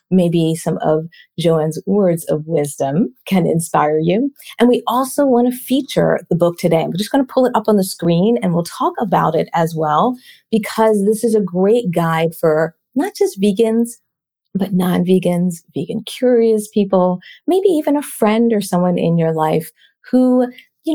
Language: English